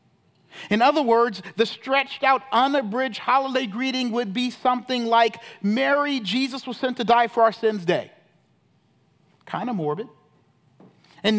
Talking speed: 140 wpm